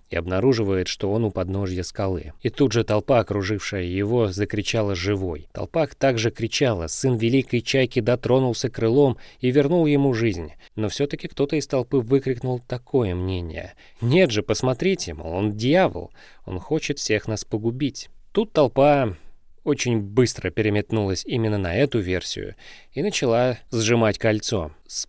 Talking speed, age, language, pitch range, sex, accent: 145 wpm, 20-39, Russian, 95-125 Hz, male, native